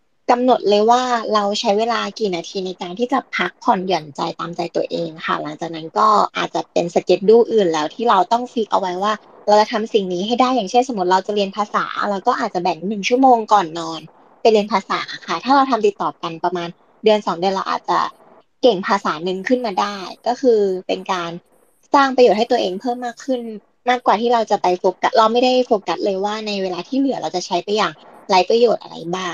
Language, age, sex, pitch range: Thai, 20-39, female, 185-240 Hz